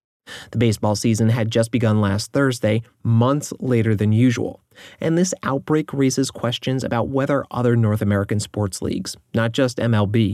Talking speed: 155 wpm